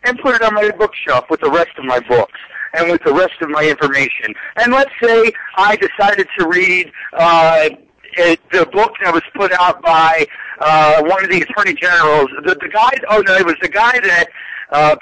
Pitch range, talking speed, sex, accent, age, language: 165-235 Hz, 195 wpm, male, American, 50-69, English